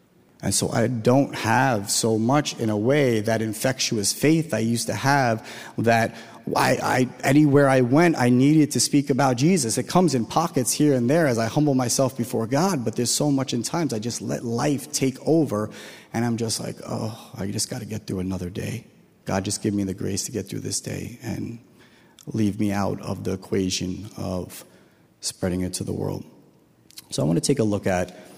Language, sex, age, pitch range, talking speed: English, male, 30-49, 105-140 Hz, 205 wpm